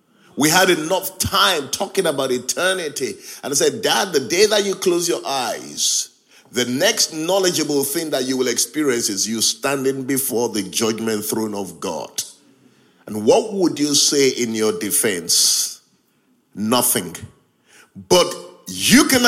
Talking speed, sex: 145 wpm, male